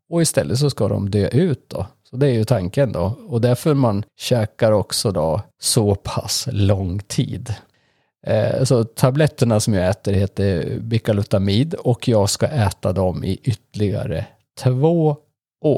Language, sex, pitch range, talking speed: Swedish, male, 105-135 Hz, 150 wpm